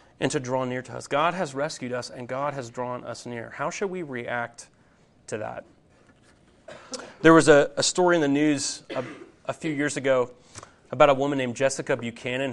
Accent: American